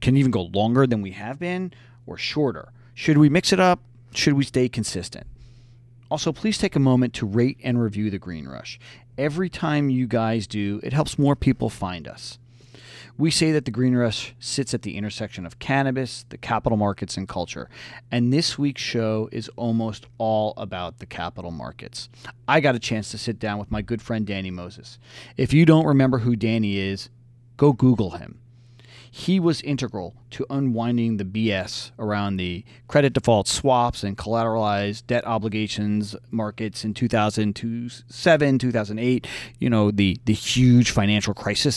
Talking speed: 170 wpm